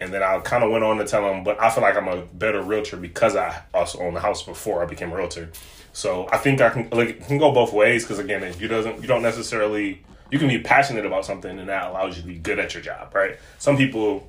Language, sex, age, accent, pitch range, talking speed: English, male, 20-39, American, 90-115 Hz, 280 wpm